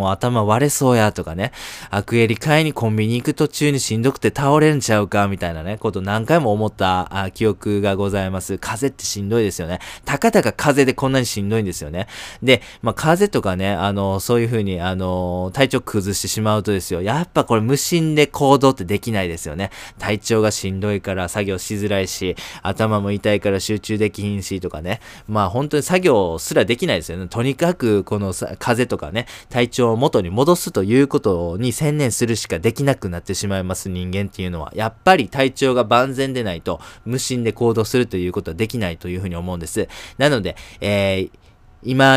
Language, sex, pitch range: Japanese, male, 95-125 Hz